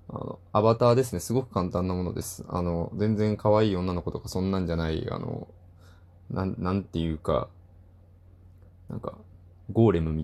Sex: male